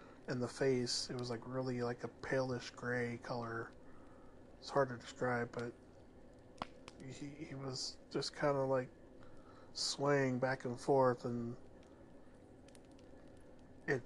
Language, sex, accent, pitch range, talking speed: English, male, American, 120-135 Hz, 130 wpm